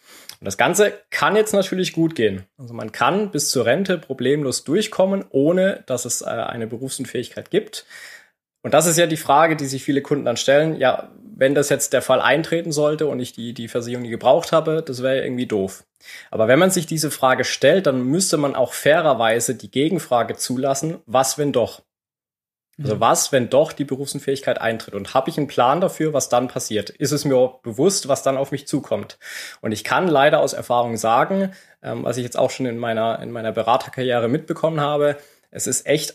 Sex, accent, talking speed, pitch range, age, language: male, German, 200 wpm, 125-160 Hz, 20-39, German